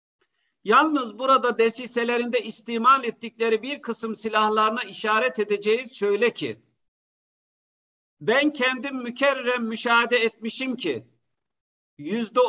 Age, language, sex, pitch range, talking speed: 50-69, Turkish, male, 210-250 Hz, 90 wpm